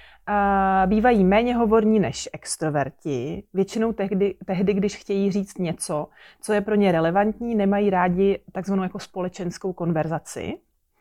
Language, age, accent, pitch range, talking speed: Czech, 30-49, native, 175-205 Hz, 120 wpm